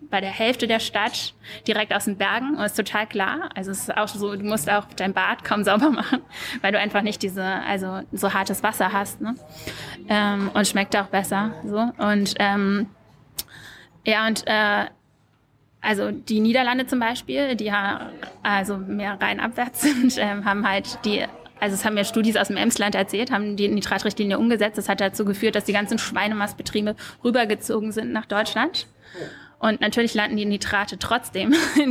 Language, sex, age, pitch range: German, female, 20-39, 205-230 Hz